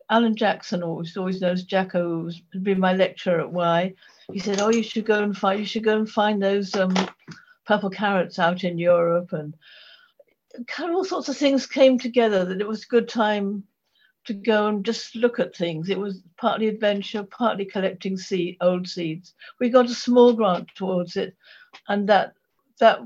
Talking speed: 190 wpm